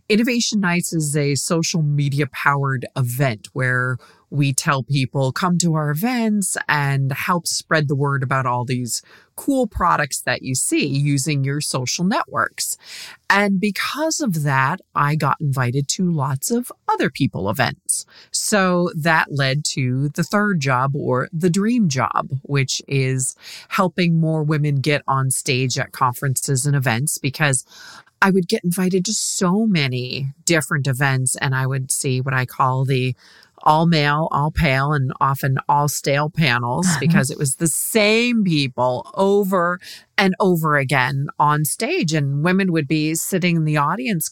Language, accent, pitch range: English, American, 135-180 Hz